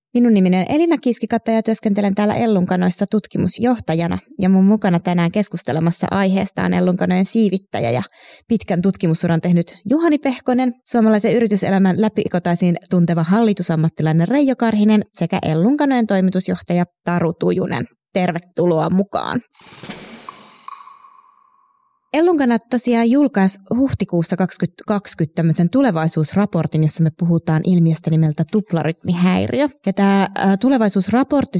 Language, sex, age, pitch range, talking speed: Finnish, female, 20-39, 175-230 Hz, 100 wpm